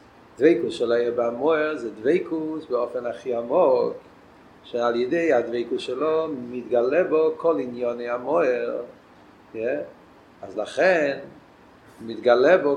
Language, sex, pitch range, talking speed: Hebrew, male, 130-155 Hz, 110 wpm